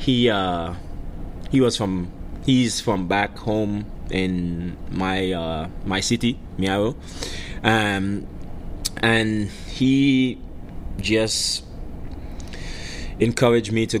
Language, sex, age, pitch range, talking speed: English, male, 20-39, 90-105 Hz, 95 wpm